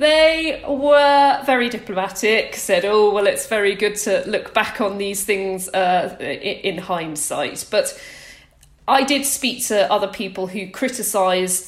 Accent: British